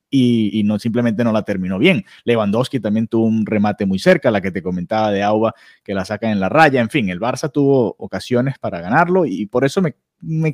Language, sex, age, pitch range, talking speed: Spanish, male, 30-49, 110-155 Hz, 230 wpm